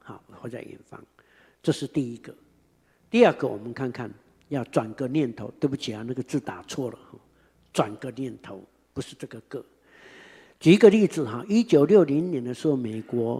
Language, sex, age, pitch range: Chinese, male, 60-79, 120-165 Hz